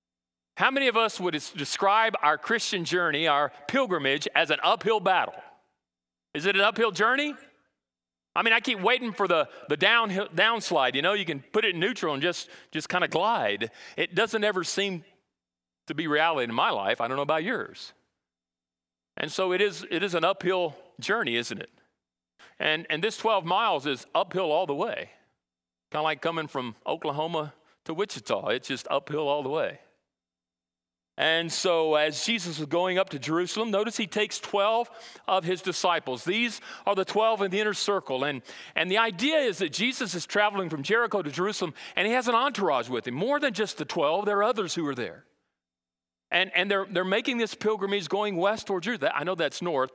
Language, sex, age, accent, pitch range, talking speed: English, male, 40-59, American, 155-210 Hz, 195 wpm